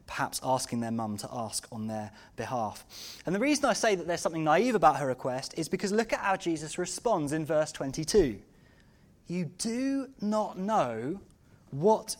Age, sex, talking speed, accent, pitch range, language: 20-39, male, 175 wpm, British, 145-215 Hz, English